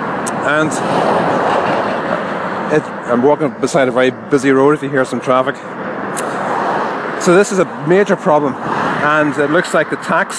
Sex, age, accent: male, 30-49, Irish